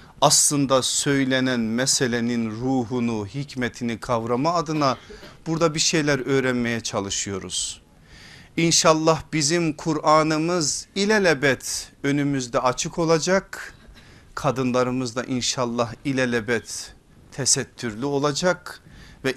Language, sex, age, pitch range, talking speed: Turkish, male, 50-69, 120-160 Hz, 80 wpm